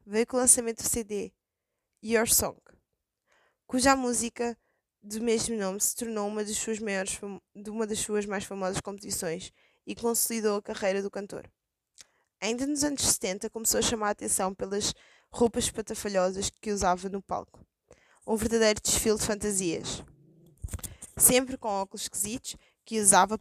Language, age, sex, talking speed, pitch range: Portuguese, 20-39, female, 155 wpm, 200-230 Hz